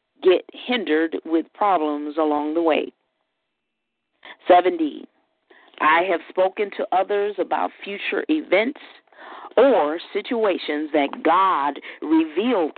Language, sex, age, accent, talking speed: English, female, 40-59, American, 100 wpm